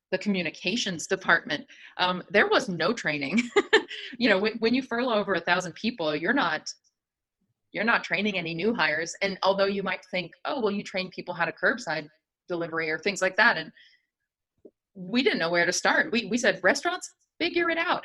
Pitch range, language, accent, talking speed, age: 170-210 Hz, English, American, 190 wpm, 30-49